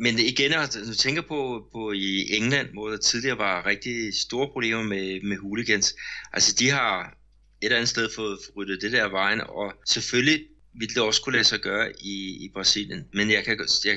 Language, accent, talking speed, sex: Danish, native, 200 wpm, male